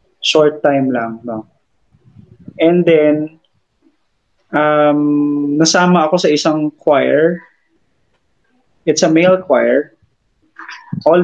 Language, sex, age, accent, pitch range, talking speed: Filipino, male, 20-39, native, 125-150 Hz, 90 wpm